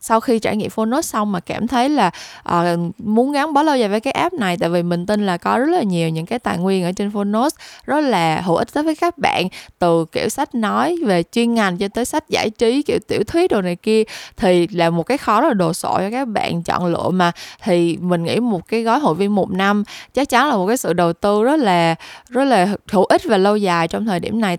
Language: Vietnamese